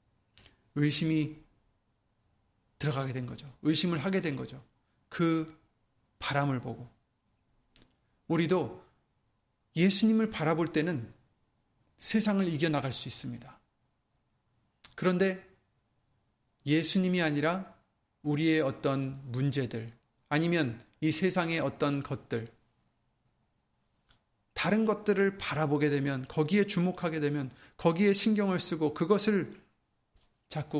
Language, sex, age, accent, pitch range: Korean, male, 30-49, native, 120-160 Hz